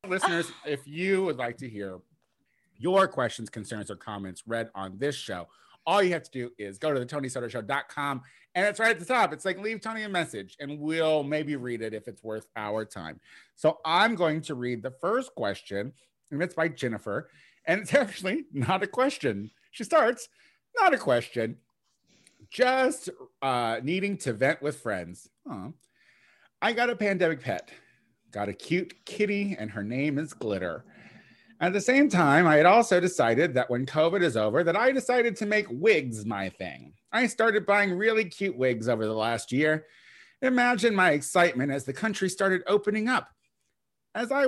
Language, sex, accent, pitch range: English, male, American, 125-205 Hz